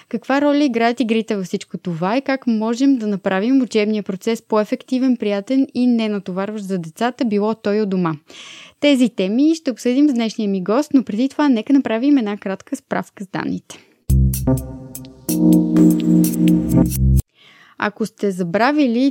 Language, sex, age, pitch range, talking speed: Bulgarian, female, 20-39, 195-255 Hz, 145 wpm